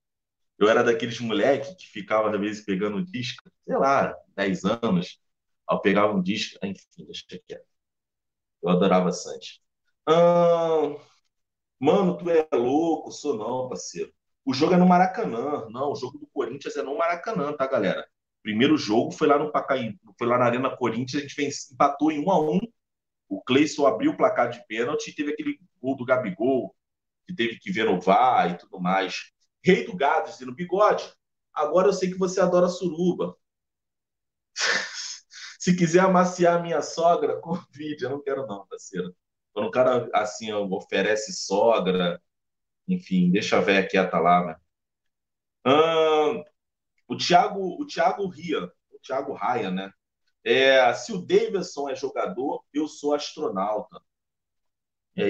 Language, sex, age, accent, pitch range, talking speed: Portuguese, male, 40-59, Brazilian, 130-185 Hz, 160 wpm